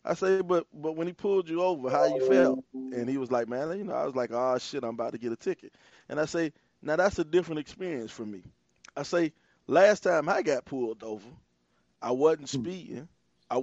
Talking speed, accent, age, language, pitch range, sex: 230 wpm, American, 20-39, English, 130-170 Hz, male